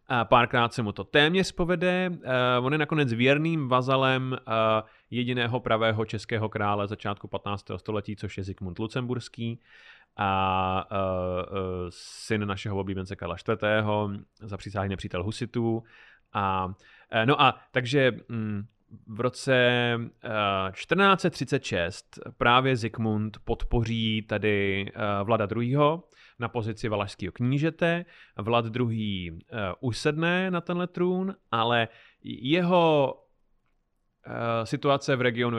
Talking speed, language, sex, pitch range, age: 110 wpm, Czech, male, 105-130 Hz, 30-49